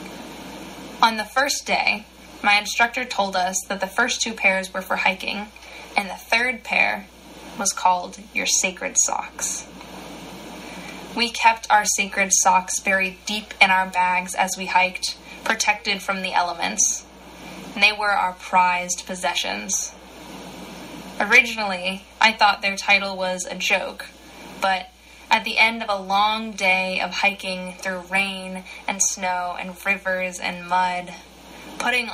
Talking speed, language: 140 wpm, English